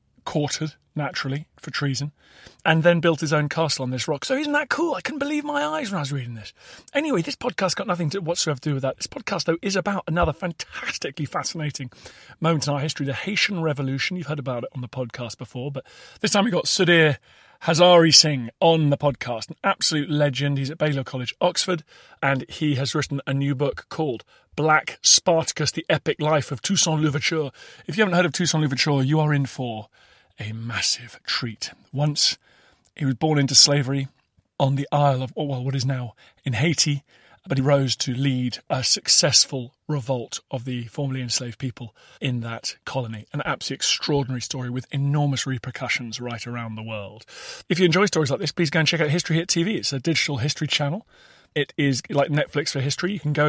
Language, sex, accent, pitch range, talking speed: English, male, British, 135-170 Hz, 205 wpm